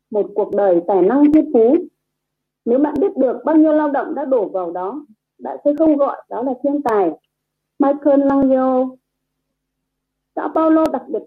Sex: female